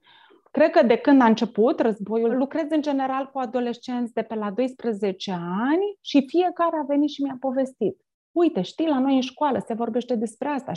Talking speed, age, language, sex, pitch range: 190 wpm, 30-49, Romanian, female, 230-295 Hz